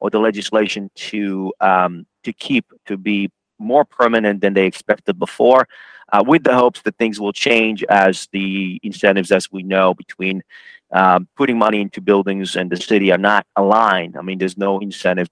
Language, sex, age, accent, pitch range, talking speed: English, male, 30-49, American, 95-110 Hz, 180 wpm